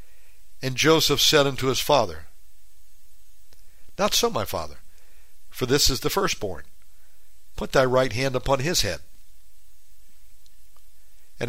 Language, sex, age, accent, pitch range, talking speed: English, male, 60-79, American, 80-135 Hz, 120 wpm